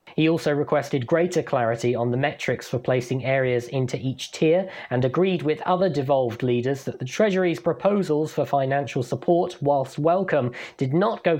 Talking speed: 170 wpm